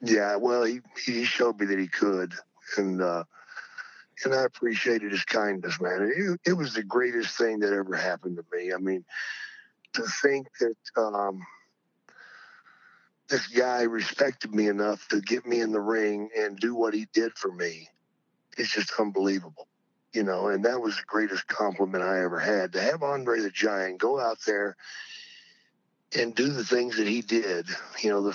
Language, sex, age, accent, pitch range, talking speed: English, male, 50-69, American, 105-150 Hz, 180 wpm